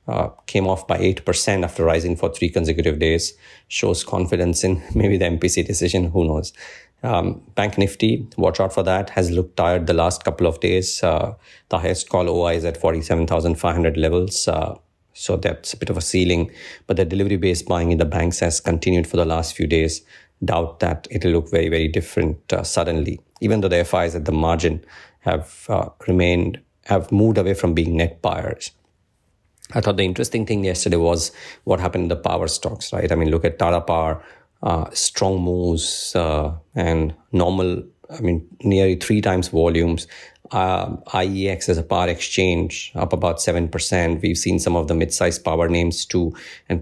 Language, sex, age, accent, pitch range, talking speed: English, male, 50-69, Indian, 85-95 Hz, 185 wpm